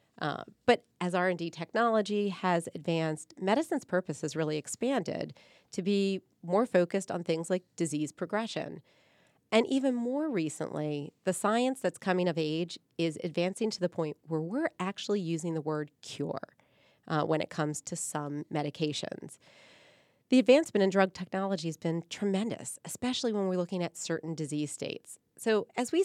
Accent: American